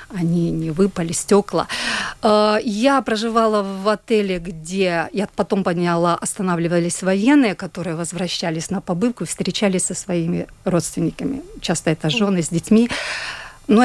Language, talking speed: Russian, 120 wpm